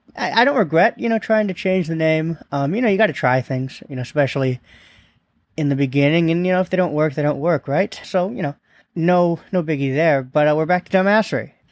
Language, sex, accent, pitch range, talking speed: English, male, American, 130-180 Hz, 245 wpm